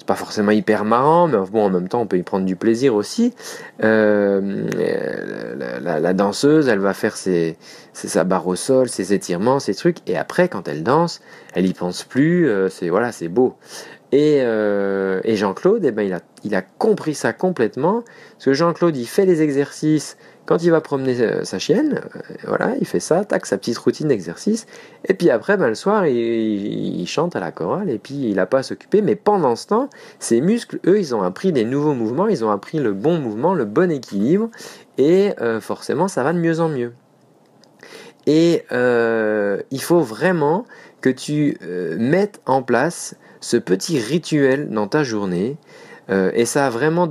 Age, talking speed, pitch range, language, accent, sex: 40-59, 205 wpm, 105-160 Hz, French, French, male